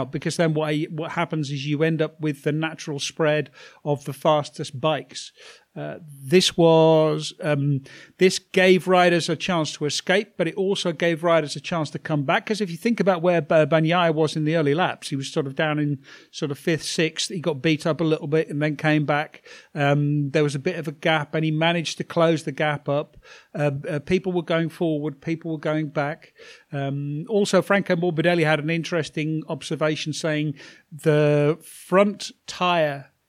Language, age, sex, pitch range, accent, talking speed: English, 50-69, male, 150-175 Hz, British, 195 wpm